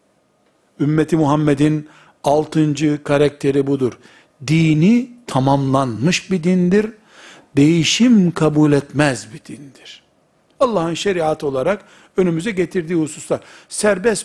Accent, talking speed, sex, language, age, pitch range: native, 90 wpm, male, Turkish, 60-79, 150-190 Hz